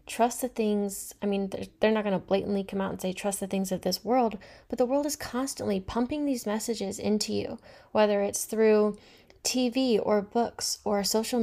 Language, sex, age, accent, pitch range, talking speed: English, female, 10-29, American, 190-230 Hz, 200 wpm